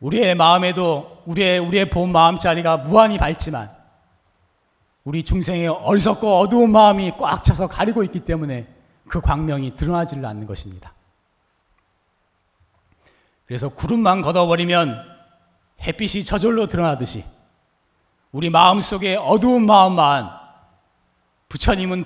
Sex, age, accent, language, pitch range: male, 40-59, native, Korean, 105-175 Hz